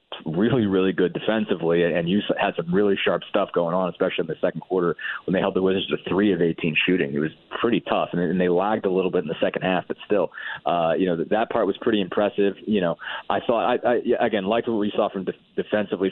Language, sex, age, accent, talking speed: English, male, 30-49, American, 240 wpm